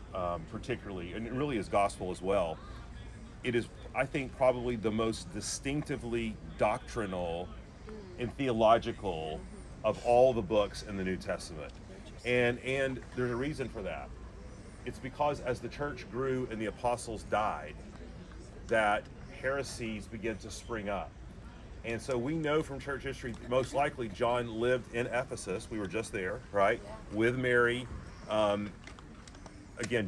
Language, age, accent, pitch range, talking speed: English, 40-59, American, 105-125 Hz, 145 wpm